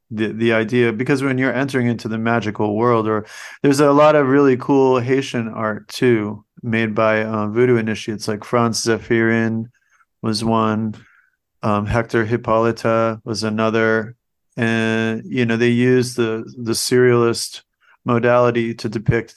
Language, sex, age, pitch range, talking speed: English, male, 40-59, 110-120 Hz, 145 wpm